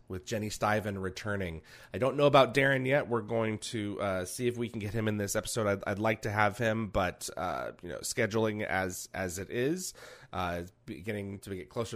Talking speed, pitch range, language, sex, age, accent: 225 wpm, 95-120 Hz, English, male, 30-49, American